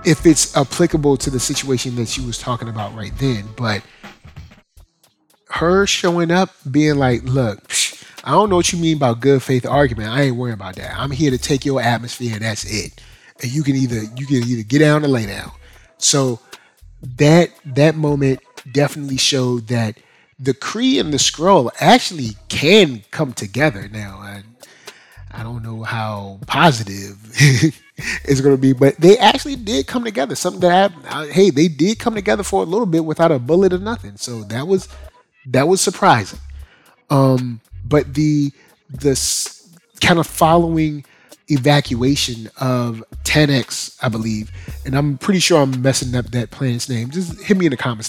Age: 30-49